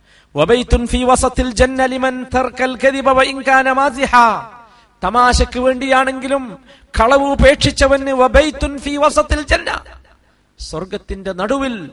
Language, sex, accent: Malayalam, male, native